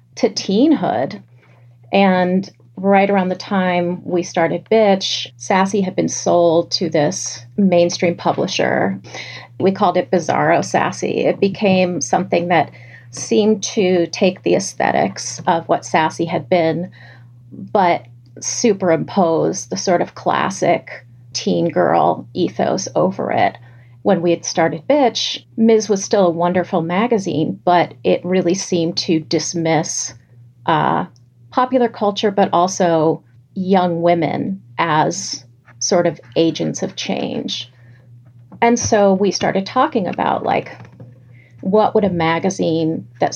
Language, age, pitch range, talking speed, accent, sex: English, 30-49, 125-190 Hz, 125 wpm, American, female